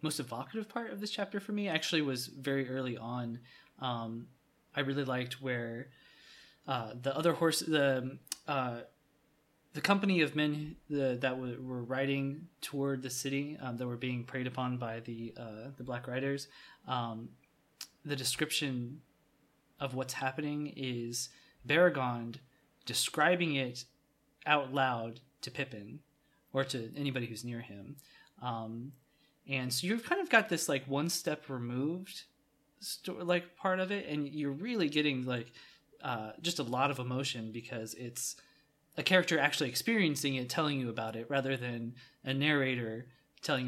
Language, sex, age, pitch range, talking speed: English, male, 20-39, 125-150 Hz, 150 wpm